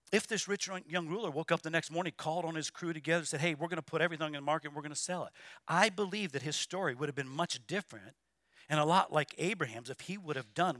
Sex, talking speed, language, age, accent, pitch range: male, 285 wpm, English, 50-69, American, 155-225 Hz